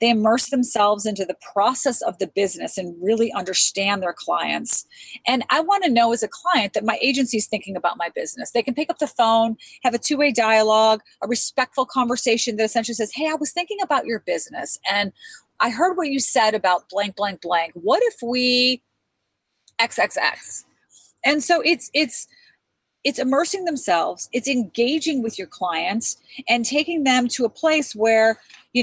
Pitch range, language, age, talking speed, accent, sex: 210-280 Hz, English, 30-49, 180 wpm, American, female